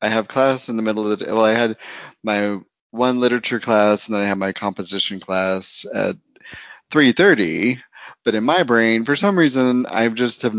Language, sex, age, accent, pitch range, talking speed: English, male, 30-49, American, 105-130 Hz, 200 wpm